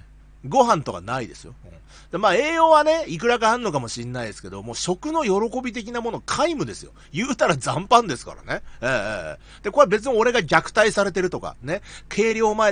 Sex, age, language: male, 40-59, Japanese